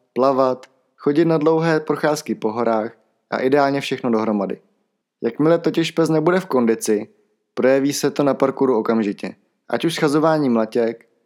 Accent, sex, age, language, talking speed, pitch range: native, male, 20-39, Czech, 145 wpm, 115-155 Hz